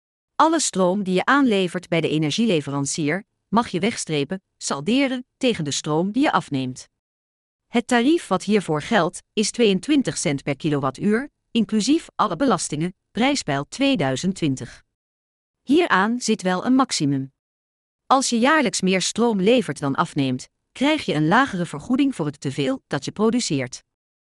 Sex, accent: female, Dutch